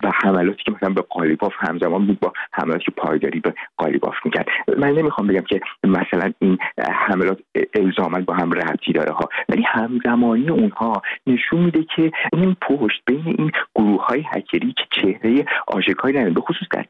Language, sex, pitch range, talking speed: Persian, male, 115-165 Hz, 160 wpm